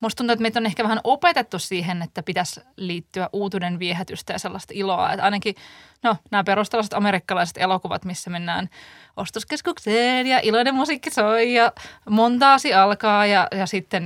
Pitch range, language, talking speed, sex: 190-230 Hz, Finnish, 160 wpm, female